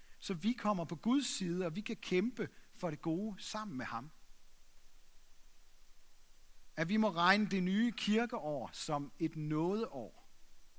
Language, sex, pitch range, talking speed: Danish, male, 150-210 Hz, 145 wpm